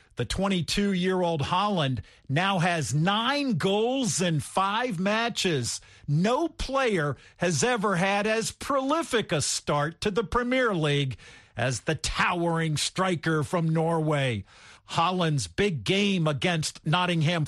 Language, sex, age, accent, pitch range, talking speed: English, male, 50-69, American, 155-205 Hz, 115 wpm